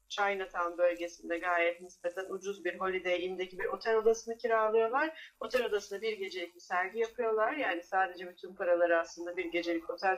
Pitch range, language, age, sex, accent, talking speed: 180-230 Hz, Turkish, 40-59, female, native, 160 wpm